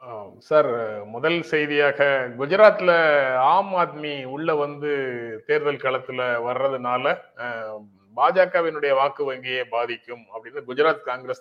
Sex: male